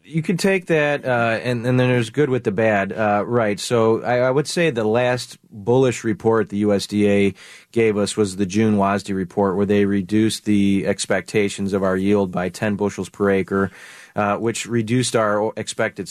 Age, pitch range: 30-49, 100-115 Hz